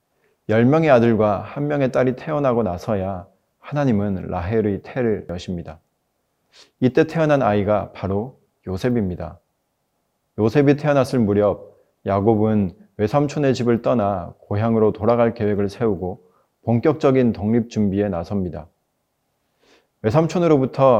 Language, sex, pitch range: Korean, male, 100-130 Hz